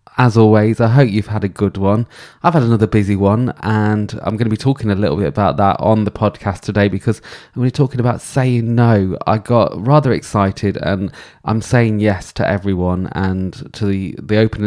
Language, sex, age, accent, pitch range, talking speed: English, male, 20-39, British, 100-120 Hz, 215 wpm